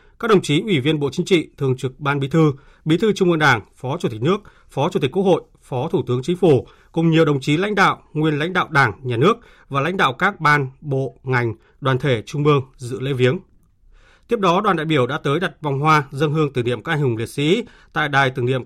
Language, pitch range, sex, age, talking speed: Vietnamese, 130-165 Hz, male, 30-49, 260 wpm